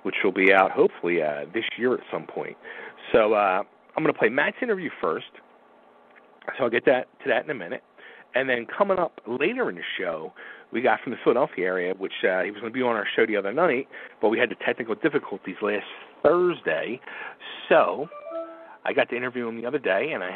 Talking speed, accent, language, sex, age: 220 wpm, American, English, male, 40-59